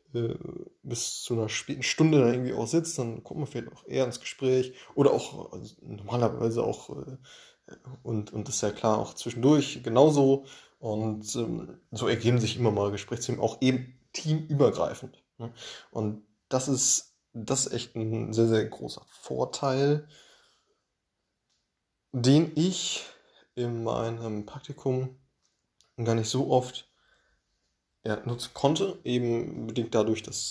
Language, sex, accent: German, male, German